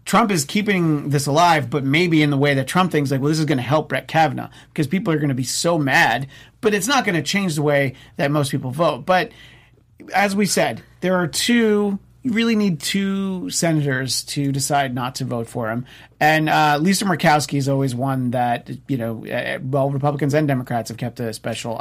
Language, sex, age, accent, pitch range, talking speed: English, male, 40-59, American, 135-175 Hz, 215 wpm